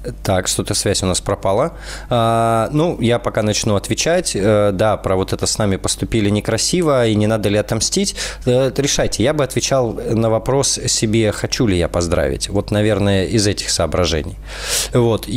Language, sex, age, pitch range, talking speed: Russian, male, 20-39, 95-115 Hz, 160 wpm